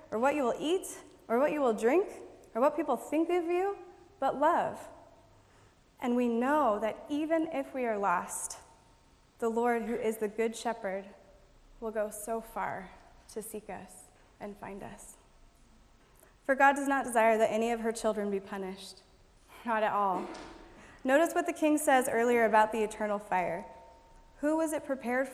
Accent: American